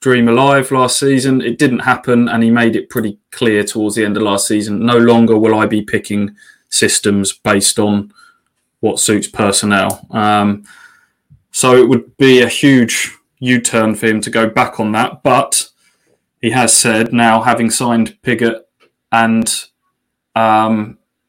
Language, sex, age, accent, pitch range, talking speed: English, male, 20-39, British, 110-125 Hz, 160 wpm